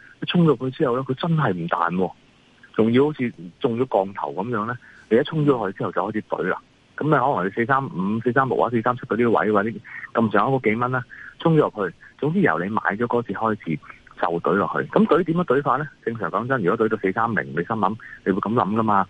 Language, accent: Chinese, native